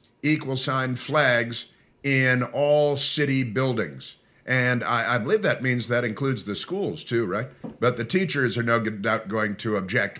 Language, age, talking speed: English, 50-69, 165 wpm